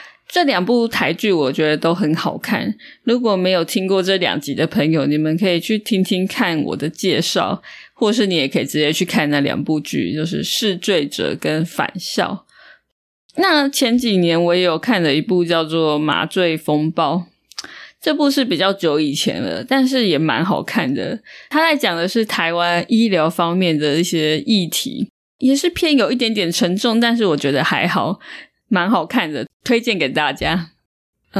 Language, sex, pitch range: Chinese, female, 170-235 Hz